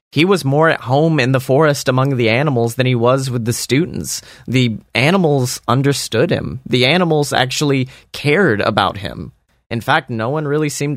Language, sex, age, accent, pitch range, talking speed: English, male, 30-49, American, 115-140 Hz, 180 wpm